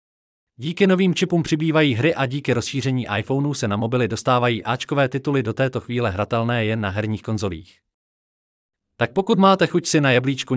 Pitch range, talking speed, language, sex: 110-150 Hz, 170 wpm, Czech, male